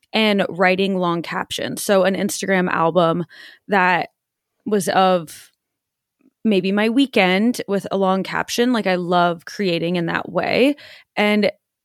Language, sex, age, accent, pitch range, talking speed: English, female, 20-39, American, 180-215 Hz, 130 wpm